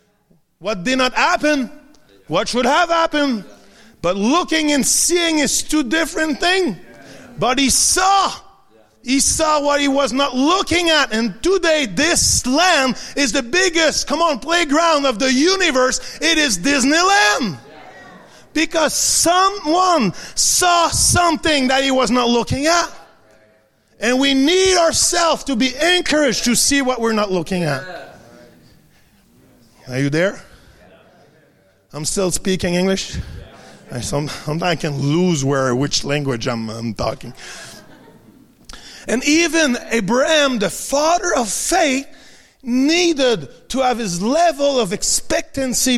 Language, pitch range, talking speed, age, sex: English, 215-320 Hz, 130 wpm, 30-49, male